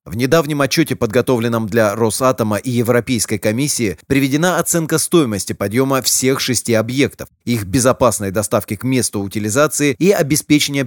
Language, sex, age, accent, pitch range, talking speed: Russian, male, 30-49, native, 110-135 Hz, 135 wpm